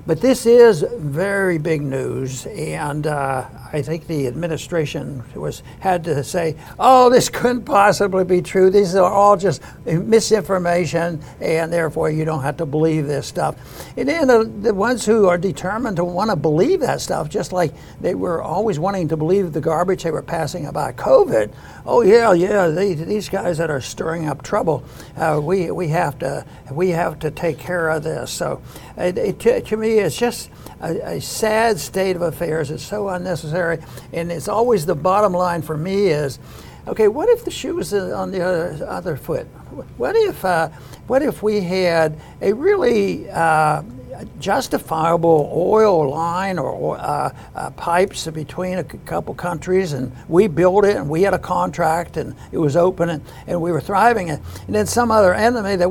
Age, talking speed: 60-79, 180 wpm